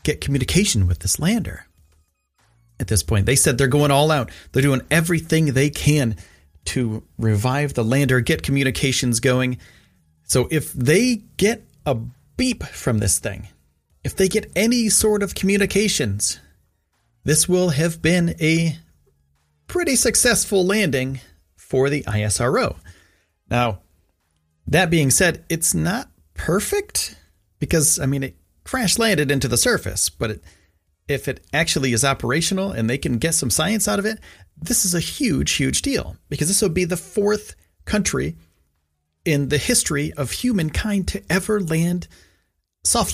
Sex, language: male, English